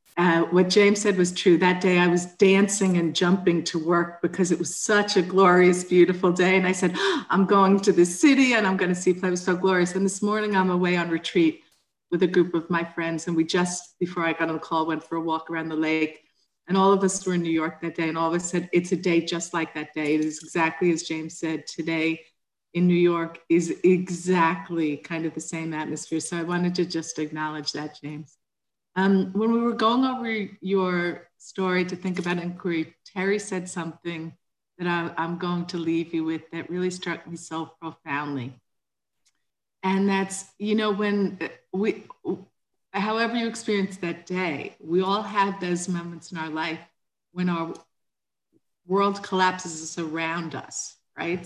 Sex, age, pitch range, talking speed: female, 50-69, 165-185 Hz, 200 wpm